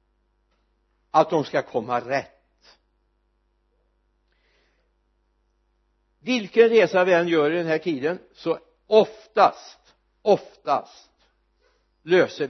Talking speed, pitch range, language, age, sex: 85 wpm, 125-175 Hz, Swedish, 60-79, male